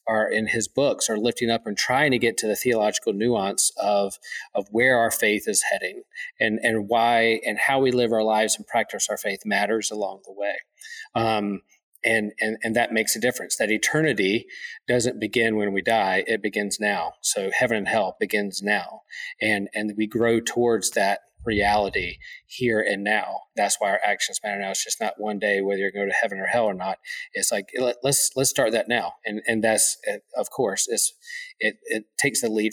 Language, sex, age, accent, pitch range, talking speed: English, male, 40-59, American, 105-120 Hz, 205 wpm